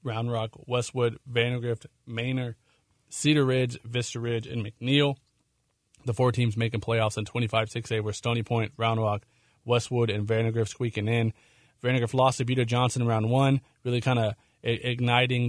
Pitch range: 110-125 Hz